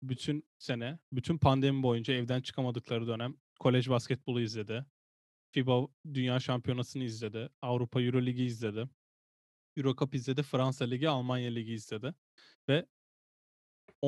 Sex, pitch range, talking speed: male, 115-140 Hz, 125 wpm